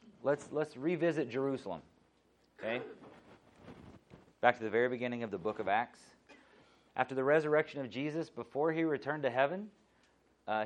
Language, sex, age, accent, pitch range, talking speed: English, male, 30-49, American, 105-130 Hz, 145 wpm